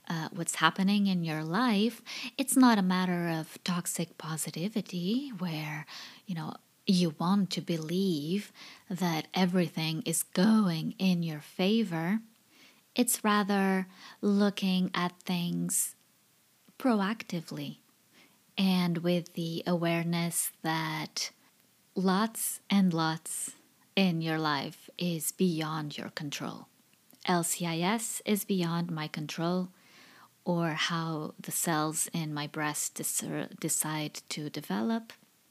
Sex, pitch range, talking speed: female, 160-200 Hz, 105 wpm